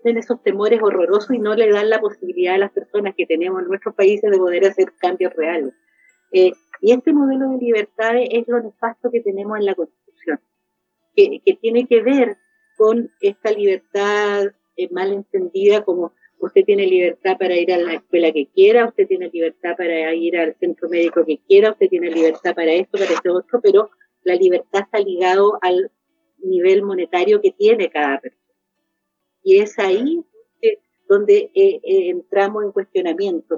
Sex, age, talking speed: female, 40-59, 175 wpm